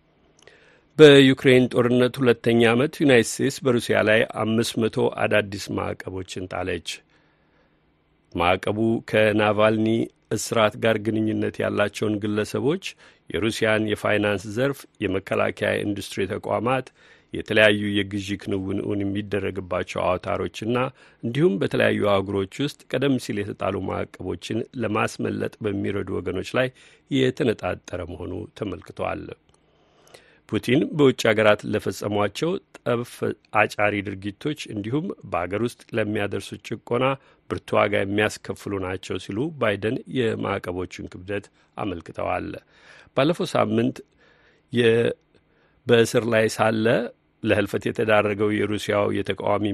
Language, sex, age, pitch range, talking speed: Amharic, male, 50-69, 100-120 Hz, 90 wpm